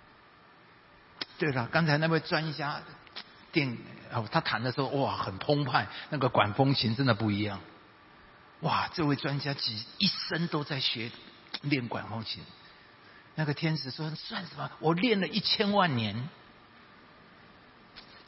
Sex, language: male, Chinese